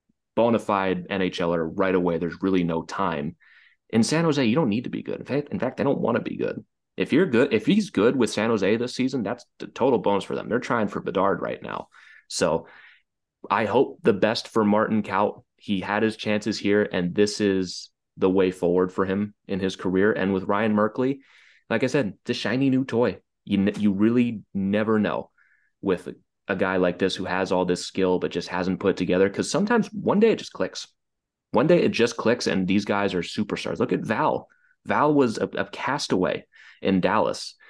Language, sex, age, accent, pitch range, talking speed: English, male, 30-49, American, 95-120 Hz, 215 wpm